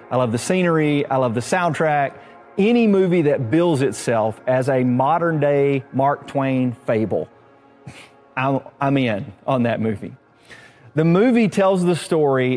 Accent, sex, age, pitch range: American, male, 40-59, 125-160 Hz